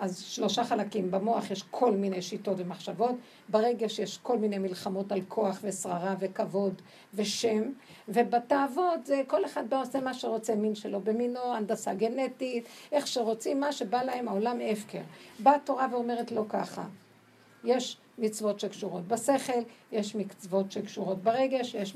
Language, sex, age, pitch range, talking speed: Hebrew, female, 50-69, 205-255 Hz, 140 wpm